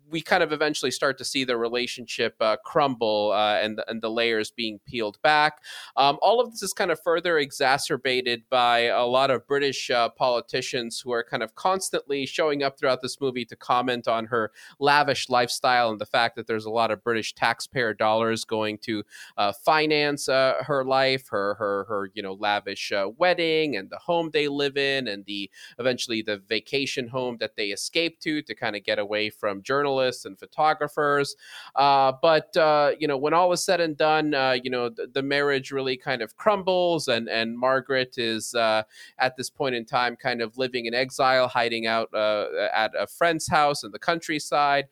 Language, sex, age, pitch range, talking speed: English, male, 30-49, 115-150 Hz, 200 wpm